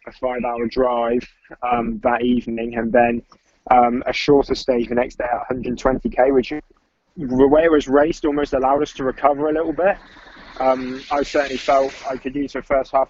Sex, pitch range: male, 120-130 Hz